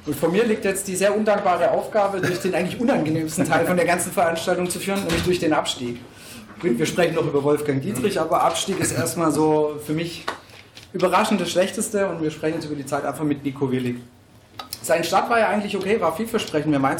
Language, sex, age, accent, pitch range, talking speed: German, male, 40-59, German, 155-200 Hz, 215 wpm